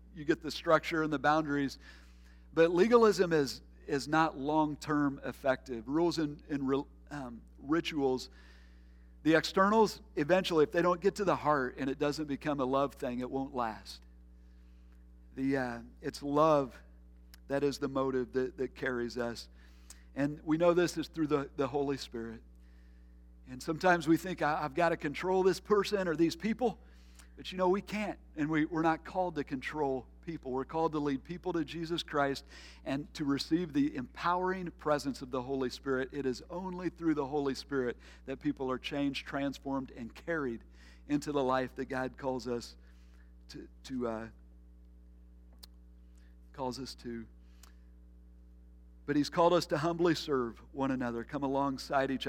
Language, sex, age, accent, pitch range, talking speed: English, male, 50-69, American, 110-160 Hz, 170 wpm